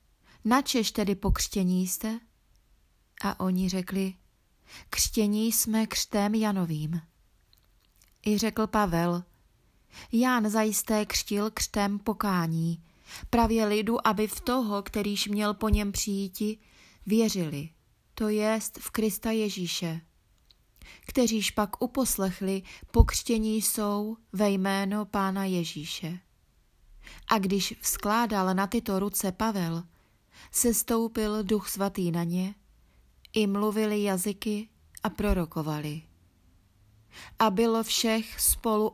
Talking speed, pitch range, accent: 100 wpm, 180-220 Hz, native